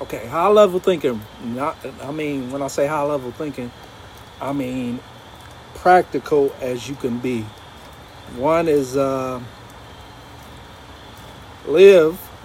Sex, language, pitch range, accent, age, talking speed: male, English, 120-155 Hz, American, 50-69, 115 wpm